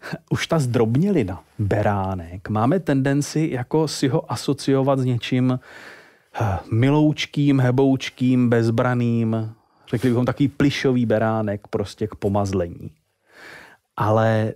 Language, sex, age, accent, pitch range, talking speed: Czech, male, 30-49, native, 105-135 Hz, 105 wpm